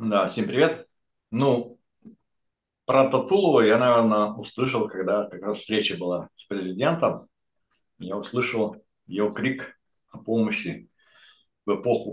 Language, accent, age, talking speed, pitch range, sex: Russian, native, 60-79, 120 wpm, 95-115 Hz, male